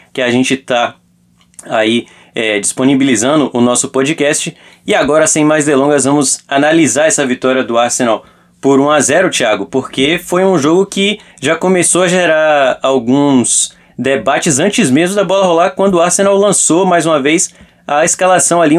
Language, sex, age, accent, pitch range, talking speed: Portuguese, male, 20-39, Brazilian, 130-170 Hz, 160 wpm